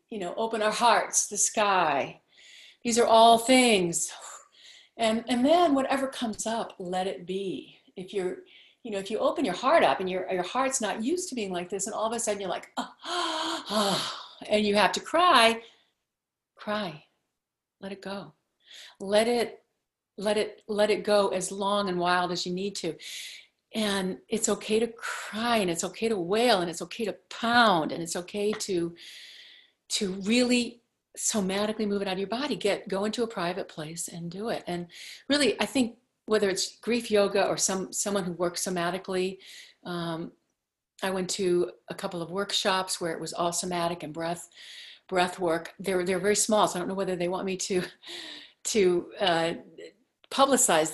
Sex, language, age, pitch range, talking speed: female, English, 50-69, 180-225 Hz, 185 wpm